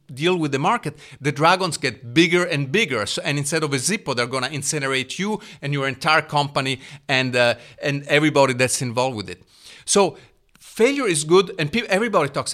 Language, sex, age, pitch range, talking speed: English, male, 40-59, 130-165 Hz, 190 wpm